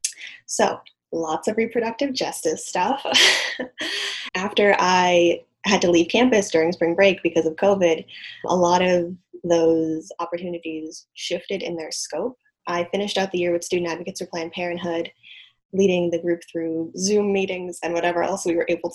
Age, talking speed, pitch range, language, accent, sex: 10-29, 160 wpm, 170-195 Hz, English, American, female